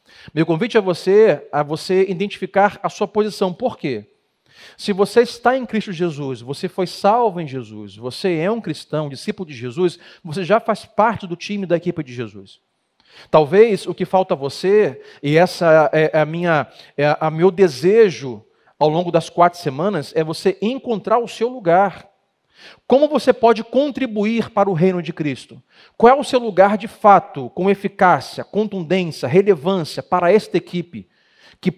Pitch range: 165-210 Hz